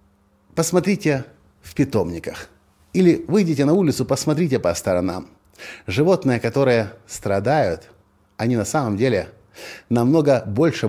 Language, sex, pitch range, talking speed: Russian, male, 95-120 Hz, 105 wpm